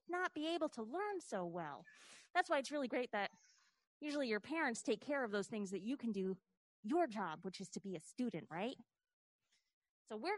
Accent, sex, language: American, female, English